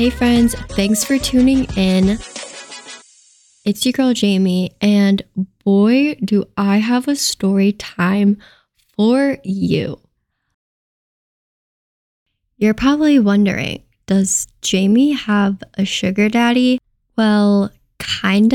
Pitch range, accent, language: 195-245 Hz, American, English